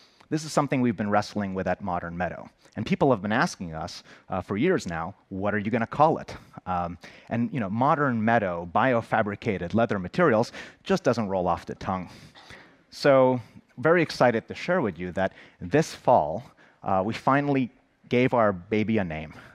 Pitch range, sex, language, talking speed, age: 95-125 Hz, male, English, 185 wpm, 30-49